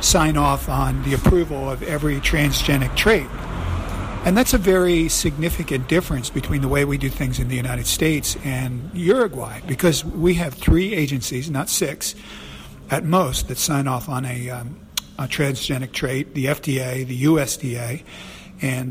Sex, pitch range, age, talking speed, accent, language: male, 130-160 Hz, 50-69, 160 wpm, American, English